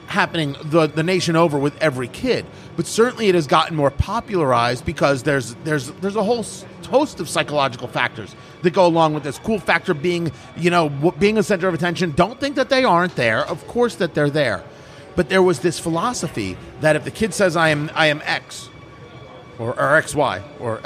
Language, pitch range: English, 150-220 Hz